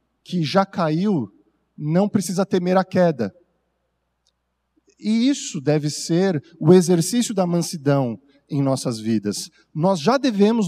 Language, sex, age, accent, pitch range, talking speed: Portuguese, male, 50-69, Brazilian, 150-210 Hz, 125 wpm